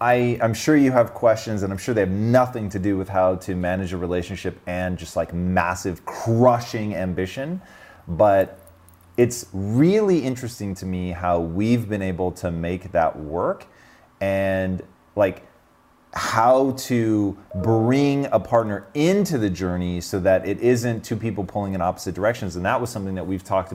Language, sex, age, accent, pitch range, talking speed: English, male, 30-49, American, 95-120 Hz, 165 wpm